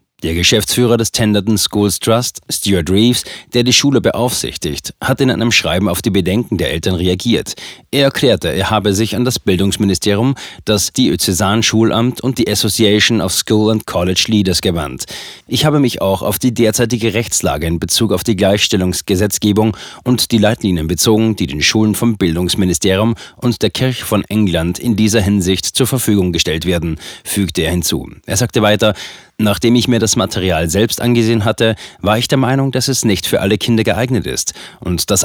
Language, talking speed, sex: German, 175 wpm, male